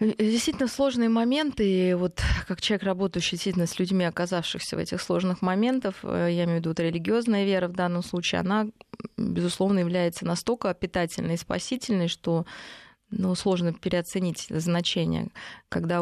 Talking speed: 140 wpm